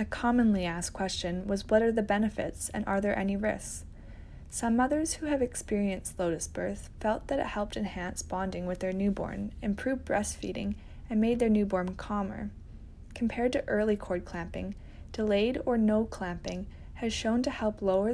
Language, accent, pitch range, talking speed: English, American, 185-225 Hz, 170 wpm